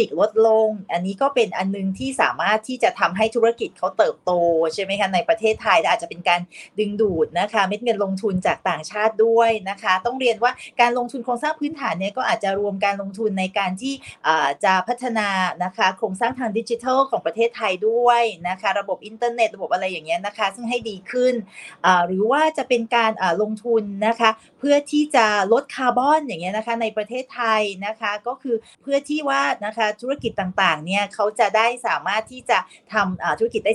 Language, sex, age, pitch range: Thai, female, 30-49, 195-245 Hz